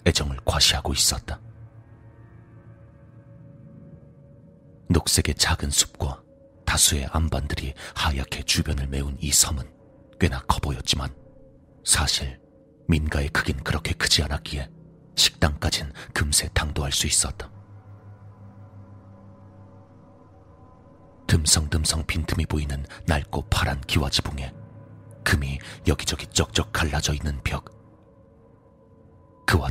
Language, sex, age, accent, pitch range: Korean, male, 40-59, native, 75-95 Hz